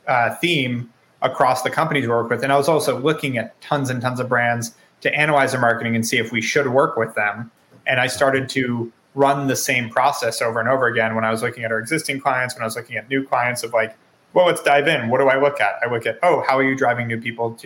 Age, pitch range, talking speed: 20-39, 115-135 Hz, 270 wpm